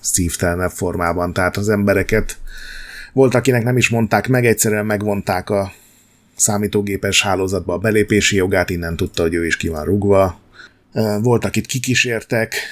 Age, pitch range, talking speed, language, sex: 30-49, 95-115 Hz, 140 wpm, Hungarian, male